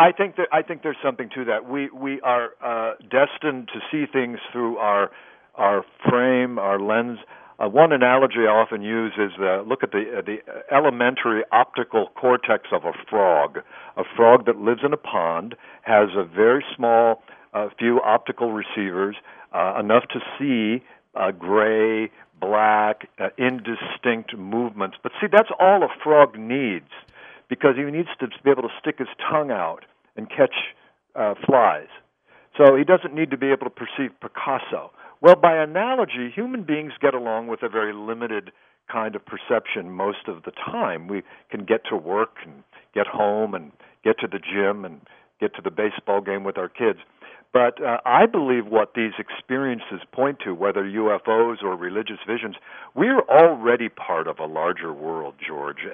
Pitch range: 110-135 Hz